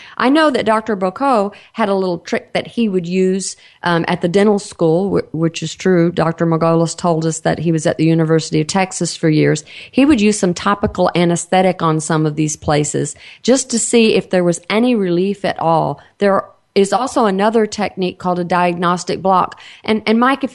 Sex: female